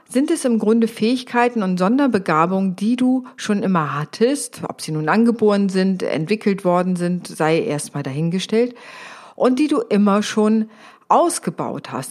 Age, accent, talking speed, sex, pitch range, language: 50-69, German, 155 wpm, female, 170-230 Hz, German